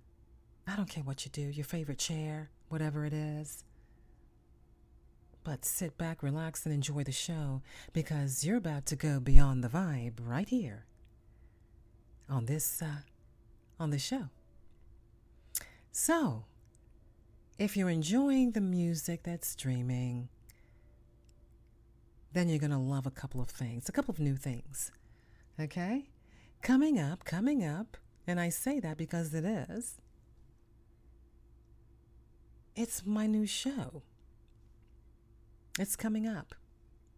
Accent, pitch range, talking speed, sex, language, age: American, 120-180 Hz, 125 wpm, female, English, 40-59